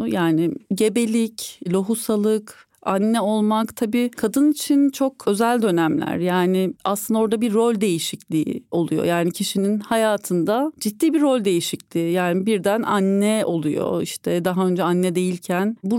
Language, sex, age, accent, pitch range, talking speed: Turkish, female, 40-59, native, 195-235 Hz, 130 wpm